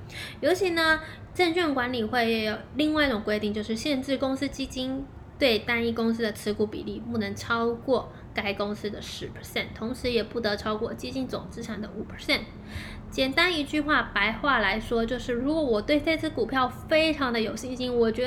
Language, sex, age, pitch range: Chinese, female, 20-39, 225-290 Hz